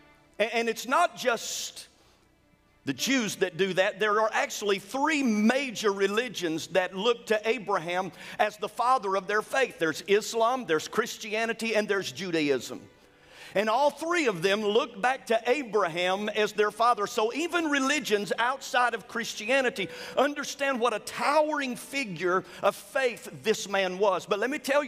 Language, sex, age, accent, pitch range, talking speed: English, male, 50-69, American, 195-255 Hz, 155 wpm